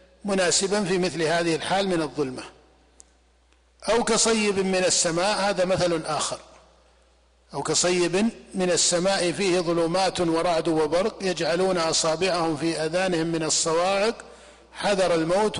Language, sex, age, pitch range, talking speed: Arabic, male, 50-69, 165-195 Hz, 115 wpm